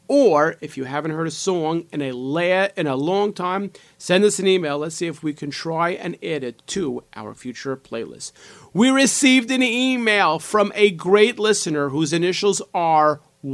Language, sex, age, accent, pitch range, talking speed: English, male, 40-59, American, 140-185 Hz, 185 wpm